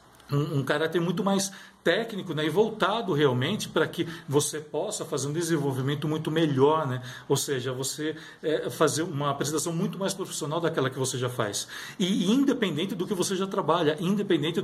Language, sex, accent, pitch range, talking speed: Portuguese, male, Brazilian, 140-180 Hz, 180 wpm